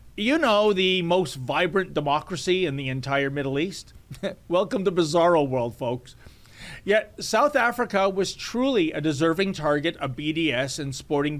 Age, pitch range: 40-59, 150-215 Hz